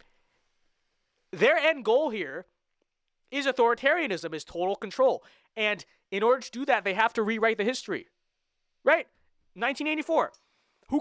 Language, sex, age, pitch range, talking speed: English, male, 20-39, 180-260 Hz, 130 wpm